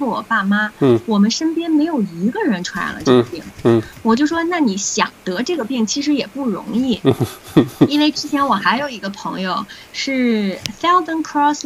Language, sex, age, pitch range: Chinese, female, 20-39, 200-255 Hz